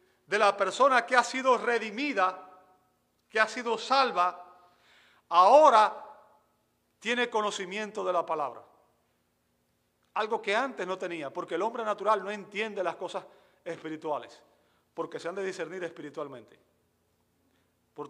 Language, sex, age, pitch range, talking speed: Spanish, male, 40-59, 175-230 Hz, 125 wpm